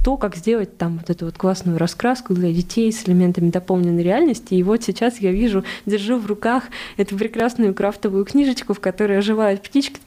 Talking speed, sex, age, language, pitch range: 190 wpm, female, 20-39, Russian, 180-215 Hz